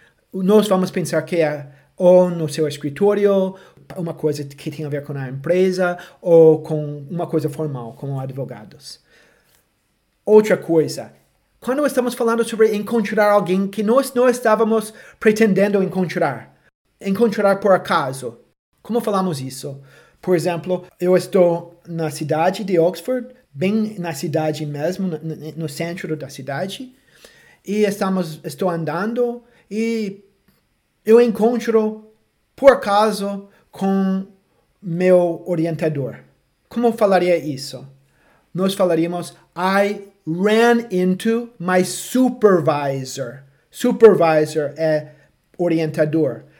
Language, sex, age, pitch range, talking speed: Portuguese, male, 30-49, 160-210 Hz, 110 wpm